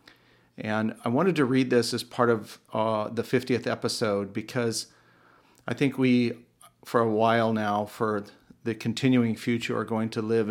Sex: male